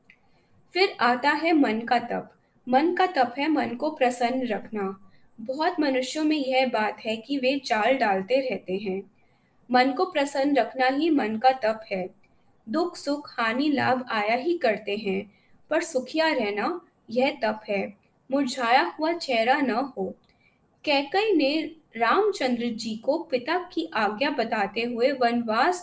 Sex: female